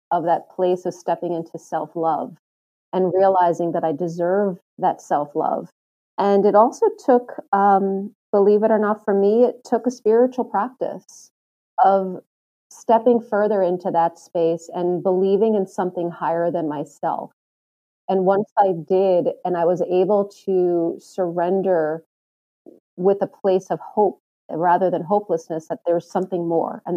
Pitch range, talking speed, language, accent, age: 170-205 Hz, 145 wpm, English, American, 30-49